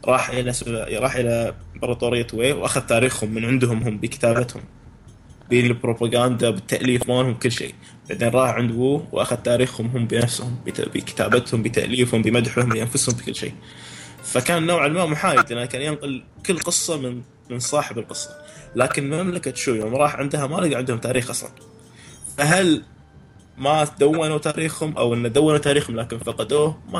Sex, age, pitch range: male, 20-39, 115-145 Hz